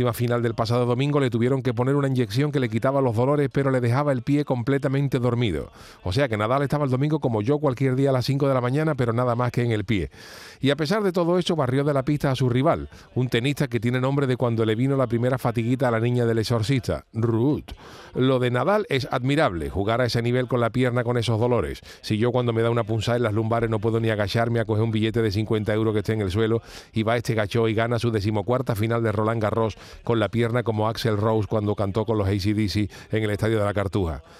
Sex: male